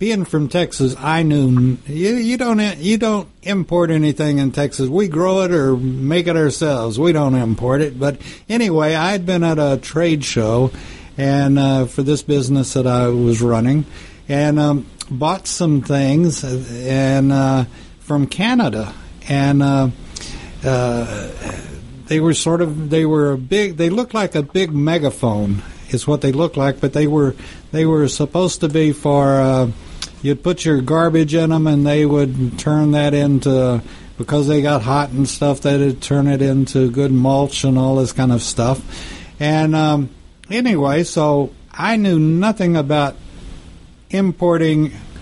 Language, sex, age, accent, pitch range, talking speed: English, male, 60-79, American, 130-160 Hz, 160 wpm